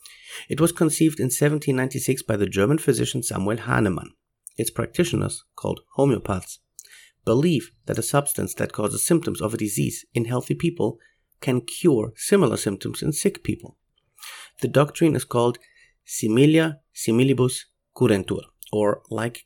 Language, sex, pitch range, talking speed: English, male, 110-150 Hz, 135 wpm